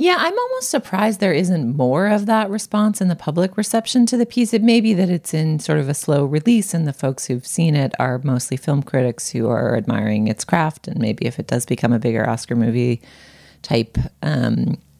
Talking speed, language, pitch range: 220 wpm, English, 115-165 Hz